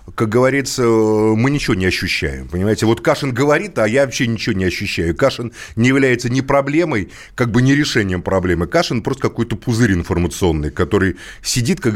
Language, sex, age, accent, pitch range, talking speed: Russian, male, 30-49, native, 110-135 Hz, 170 wpm